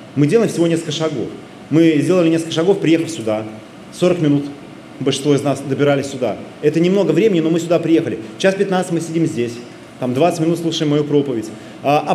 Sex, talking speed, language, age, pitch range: male, 180 wpm, Russian, 30-49, 135-165 Hz